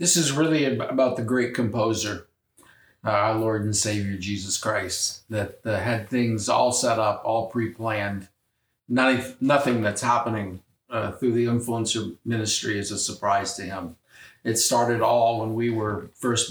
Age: 50-69